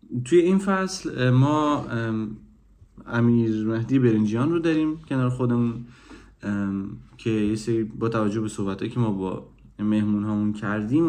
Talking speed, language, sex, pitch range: 125 wpm, Persian, male, 105-130 Hz